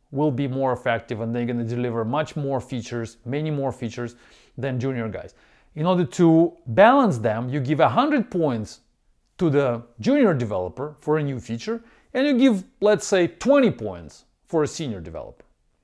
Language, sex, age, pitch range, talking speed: English, male, 40-59, 120-180 Hz, 180 wpm